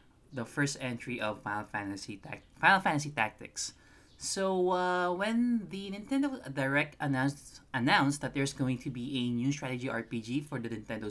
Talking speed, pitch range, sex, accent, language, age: 160 wpm, 120-175 Hz, male, native, Filipino, 20-39